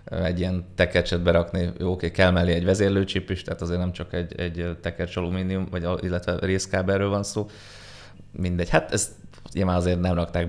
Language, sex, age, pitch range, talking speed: Hungarian, male, 20-39, 90-100 Hz, 170 wpm